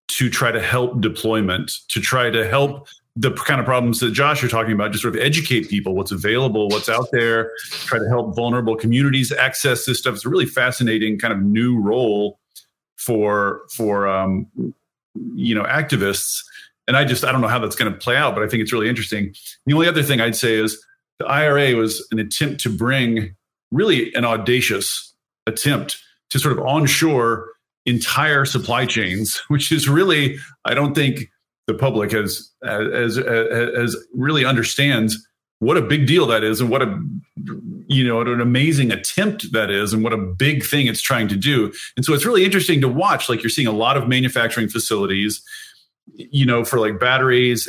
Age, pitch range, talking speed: 40-59, 110-140 Hz, 190 wpm